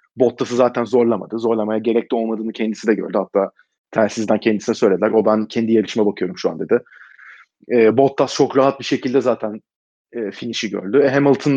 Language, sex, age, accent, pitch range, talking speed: Turkish, male, 30-49, native, 115-140 Hz, 175 wpm